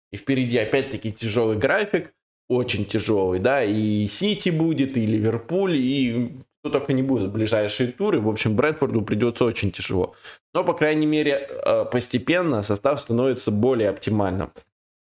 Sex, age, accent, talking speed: male, 20-39, native, 145 wpm